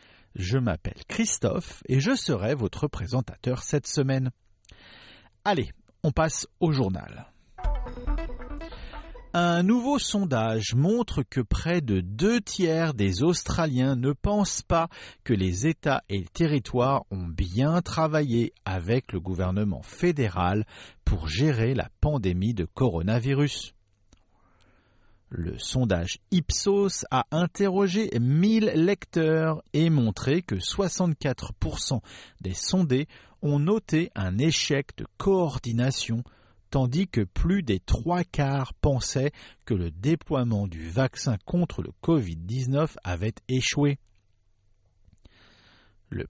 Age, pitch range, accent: 50-69, 100-160 Hz, French